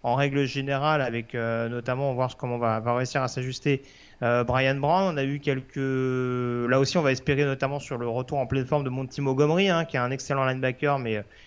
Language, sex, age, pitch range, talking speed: French, male, 30-49, 125-155 Hz, 240 wpm